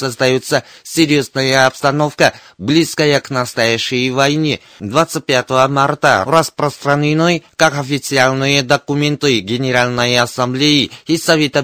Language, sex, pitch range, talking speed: Russian, male, 130-155 Hz, 90 wpm